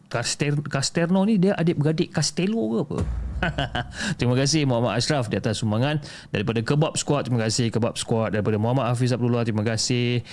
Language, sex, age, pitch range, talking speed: Malay, male, 30-49, 105-150 Hz, 165 wpm